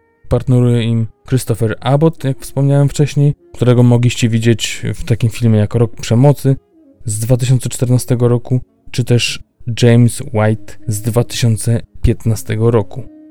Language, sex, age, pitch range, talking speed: Polish, male, 20-39, 105-120 Hz, 115 wpm